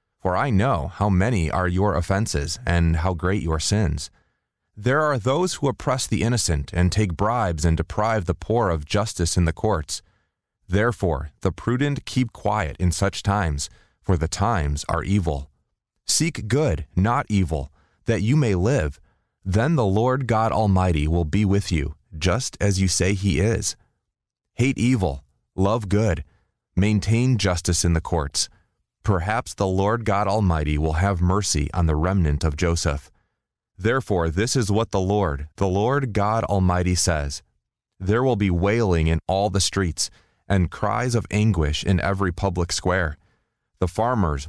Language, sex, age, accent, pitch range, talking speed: English, male, 30-49, American, 85-105 Hz, 160 wpm